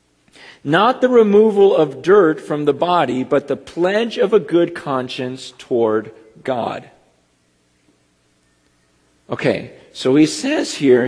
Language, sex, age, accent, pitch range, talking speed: English, male, 50-69, American, 145-220 Hz, 120 wpm